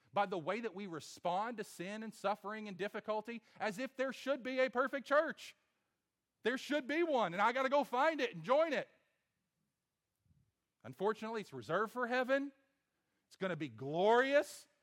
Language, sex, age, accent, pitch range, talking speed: English, male, 40-59, American, 130-195 Hz, 180 wpm